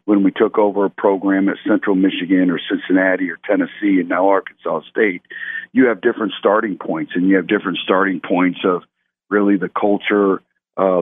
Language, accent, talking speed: English, American, 180 wpm